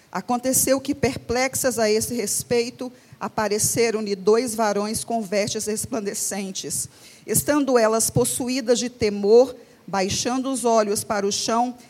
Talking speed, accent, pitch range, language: 115 wpm, Brazilian, 200-240 Hz, Portuguese